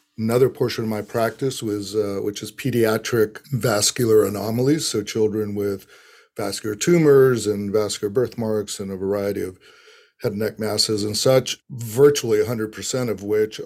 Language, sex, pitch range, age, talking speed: English, male, 105-125 Hz, 50-69, 155 wpm